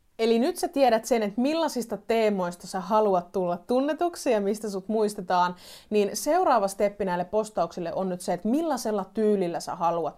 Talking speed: 170 wpm